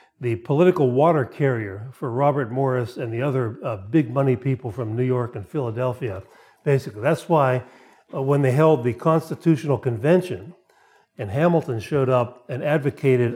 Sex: male